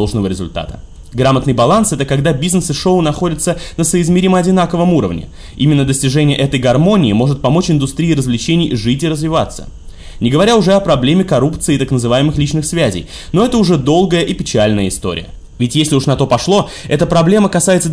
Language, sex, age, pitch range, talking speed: Russian, male, 20-39, 115-175 Hz, 165 wpm